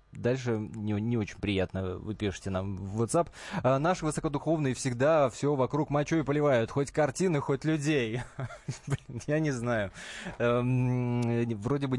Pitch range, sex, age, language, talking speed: 110-145 Hz, male, 20-39, Russian, 130 wpm